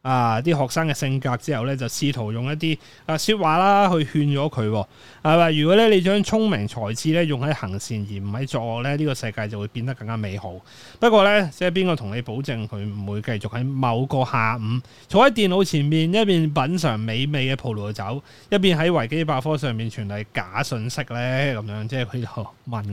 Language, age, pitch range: Chinese, 30-49, 115-160 Hz